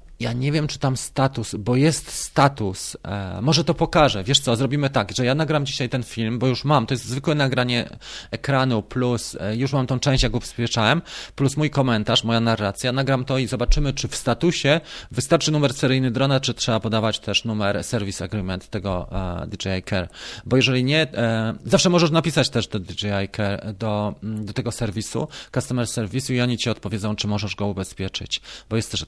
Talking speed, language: 195 wpm, Polish